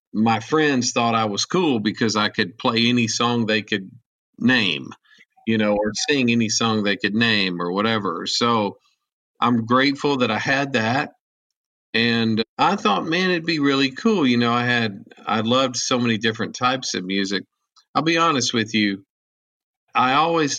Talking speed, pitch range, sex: 175 wpm, 105-135 Hz, male